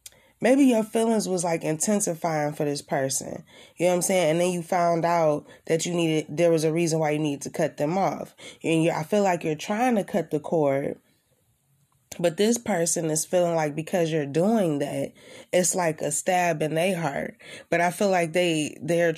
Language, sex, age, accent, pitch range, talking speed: English, female, 20-39, American, 155-195 Hz, 210 wpm